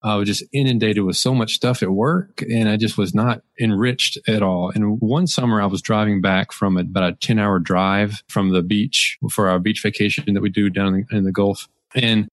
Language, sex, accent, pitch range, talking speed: English, male, American, 100-120 Hz, 220 wpm